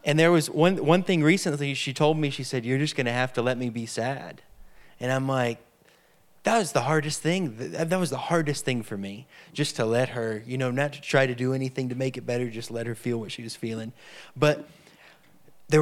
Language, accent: English, American